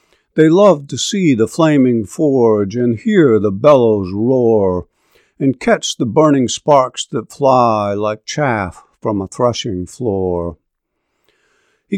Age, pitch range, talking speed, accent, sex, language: 50-69, 110-155 Hz, 130 wpm, American, male, English